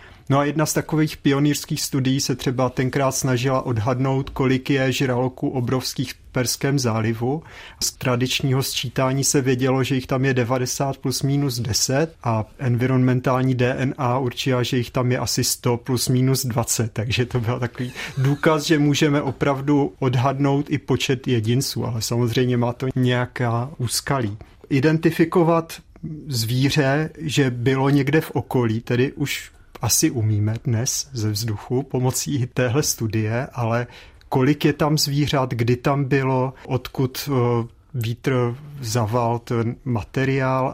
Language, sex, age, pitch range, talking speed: Czech, male, 40-59, 120-140 Hz, 135 wpm